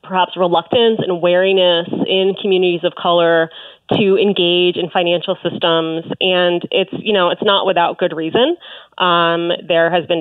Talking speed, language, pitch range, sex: 155 wpm, English, 170-220 Hz, female